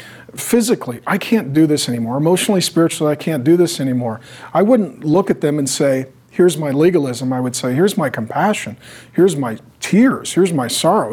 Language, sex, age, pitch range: English, male, 40-59, 140-180 Hz